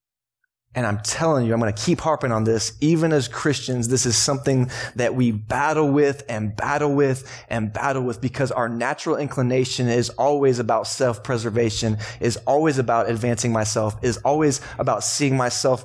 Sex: male